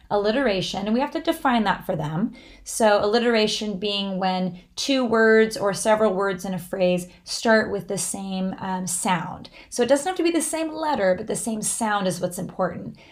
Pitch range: 185-235 Hz